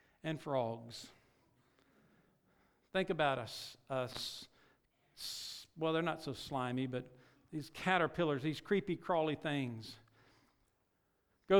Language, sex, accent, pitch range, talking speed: English, male, American, 140-180 Hz, 95 wpm